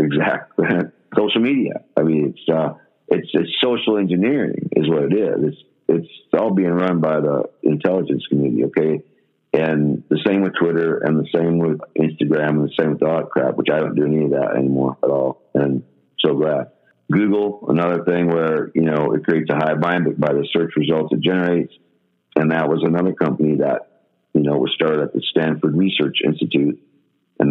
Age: 50-69